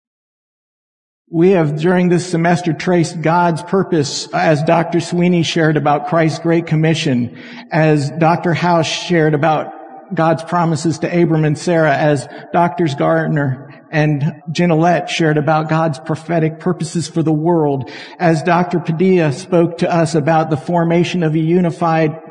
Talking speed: 140 wpm